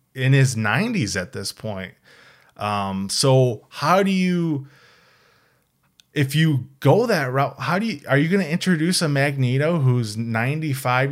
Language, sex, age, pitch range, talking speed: English, male, 20-39, 120-150 Hz, 145 wpm